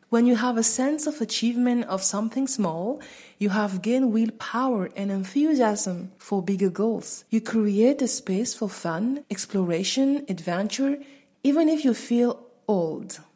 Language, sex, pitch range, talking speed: French, female, 195-255 Hz, 145 wpm